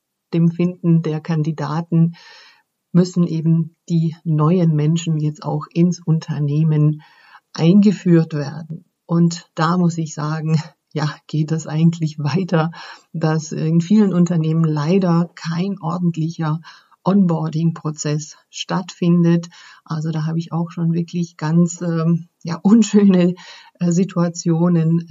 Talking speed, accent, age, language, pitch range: 110 wpm, German, 50-69, German, 160-175 Hz